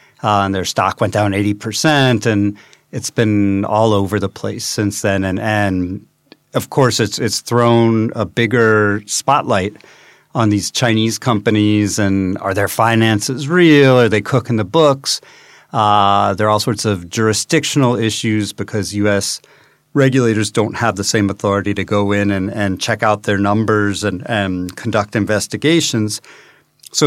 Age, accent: 40-59, American